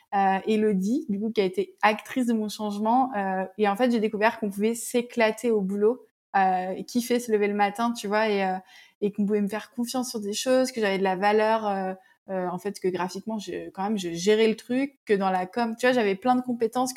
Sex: female